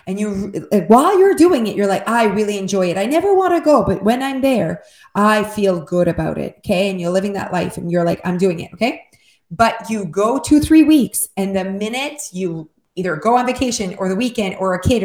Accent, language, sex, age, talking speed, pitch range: American, English, female, 20-39, 235 wpm, 195-250 Hz